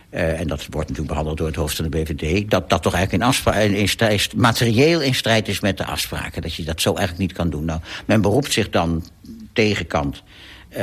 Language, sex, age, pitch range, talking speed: Dutch, male, 60-79, 85-105 Hz, 225 wpm